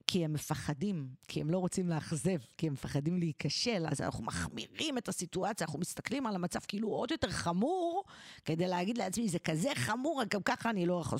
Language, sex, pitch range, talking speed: Hebrew, female, 170-230 Hz, 195 wpm